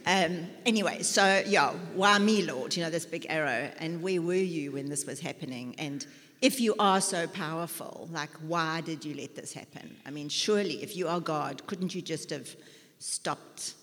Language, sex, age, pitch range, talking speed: English, female, 60-79, 150-195 Hz, 190 wpm